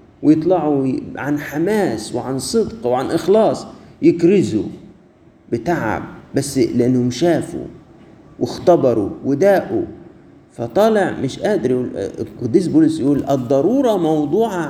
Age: 50-69